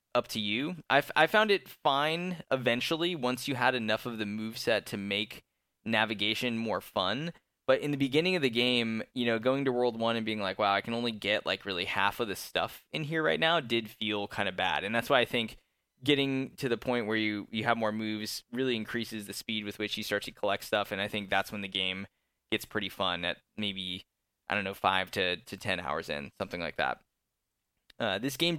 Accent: American